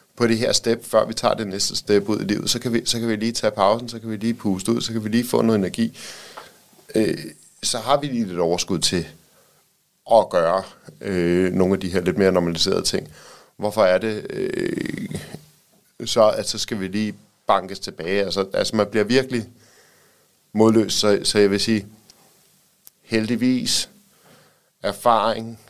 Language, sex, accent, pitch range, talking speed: Danish, male, native, 95-115 Hz, 185 wpm